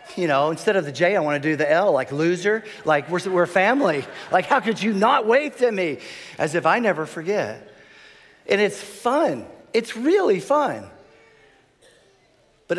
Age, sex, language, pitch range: 40-59, male, English, 135-190 Hz